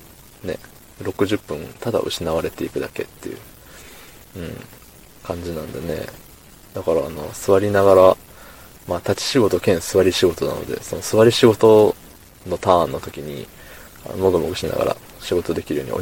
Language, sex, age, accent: Japanese, male, 20-39, native